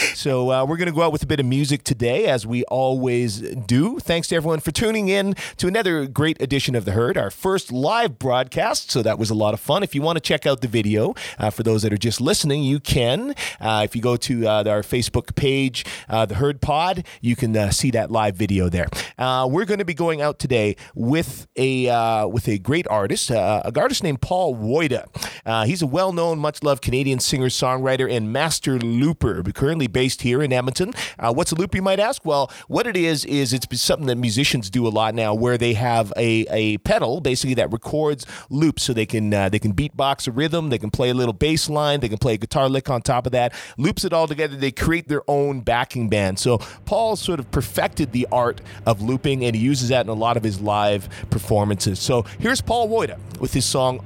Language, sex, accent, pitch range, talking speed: English, male, American, 115-150 Hz, 235 wpm